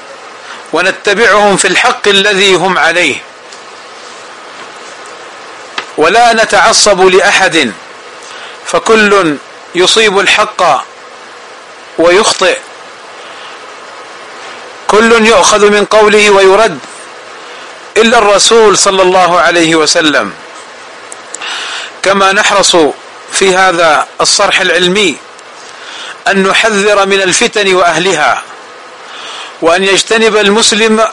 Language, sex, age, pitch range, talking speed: Arabic, male, 40-59, 195-225 Hz, 75 wpm